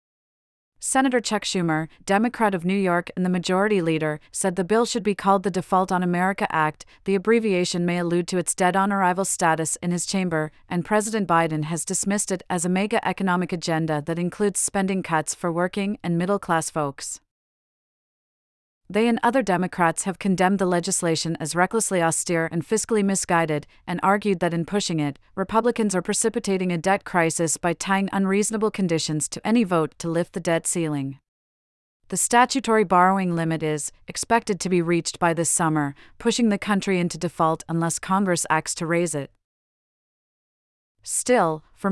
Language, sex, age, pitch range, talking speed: English, female, 40-59, 165-195 Hz, 165 wpm